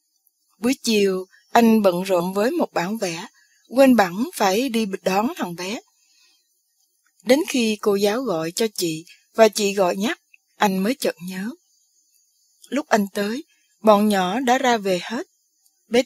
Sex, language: female, Vietnamese